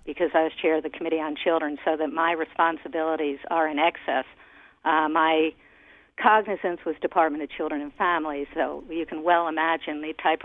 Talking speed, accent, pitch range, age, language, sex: 185 wpm, American, 155-175 Hz, 50-69, English, female